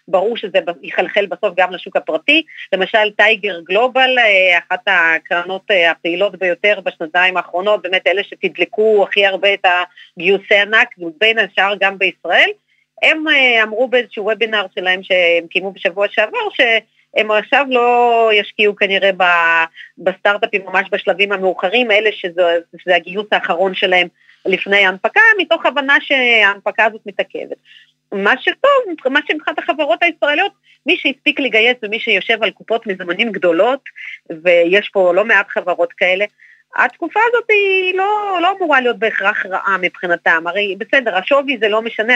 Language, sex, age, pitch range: Hebrew, female, 30-49, 185-250 Hz